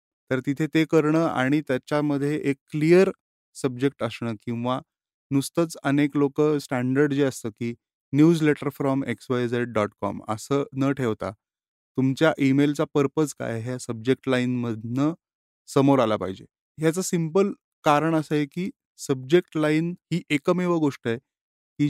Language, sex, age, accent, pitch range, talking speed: Marathi, male, 30-49, native, 120-145 Hz, 120 wpm